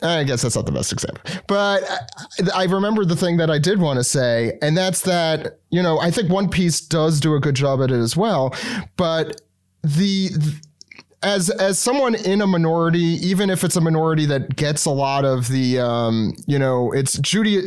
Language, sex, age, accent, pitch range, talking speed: English, male, 30-49, American, 135-175 Hz, 205 wpm